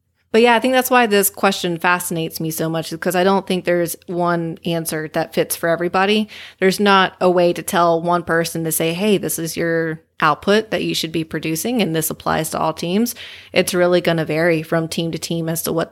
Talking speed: 230 wpm